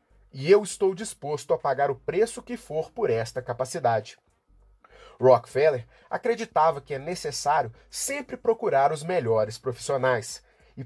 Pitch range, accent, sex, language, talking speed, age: 130-205 Hz, Brazilian, male, Portuguese, 135 wpm, 30-49